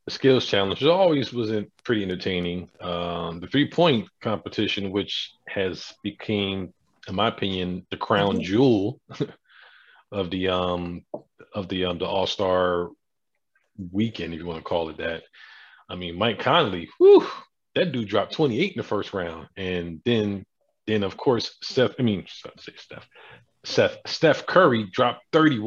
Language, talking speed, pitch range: English, 165 wpm, 90-130 Hz